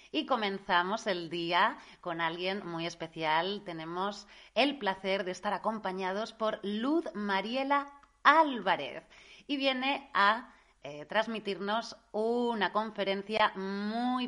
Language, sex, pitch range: Spanish, female, 180-235 Hz